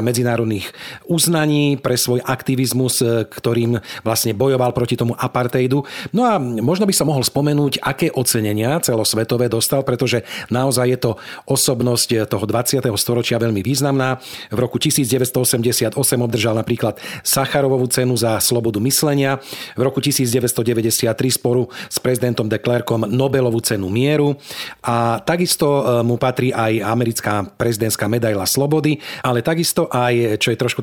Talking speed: 130 wpm